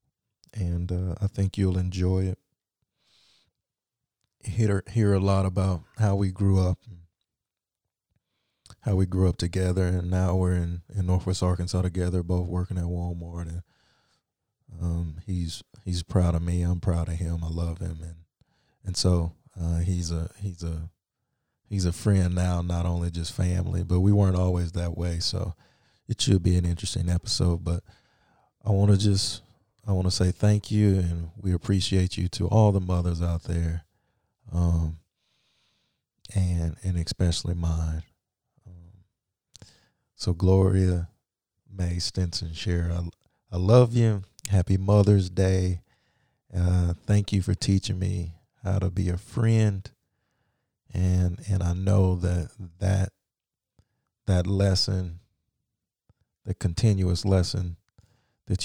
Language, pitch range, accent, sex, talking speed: English, 85-100 Hz, American, male, 140 wpm